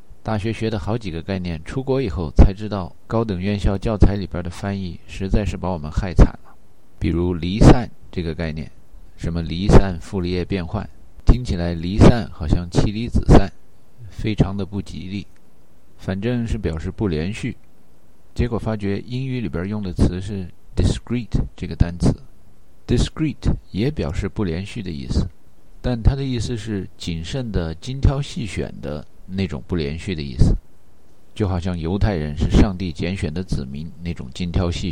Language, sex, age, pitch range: Chinese, male, 50-69, 85-110 Hz